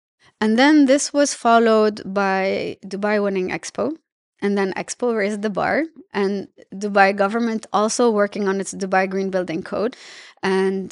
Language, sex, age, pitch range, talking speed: English, female, 20-39, 195-225 Hz, 150 wpm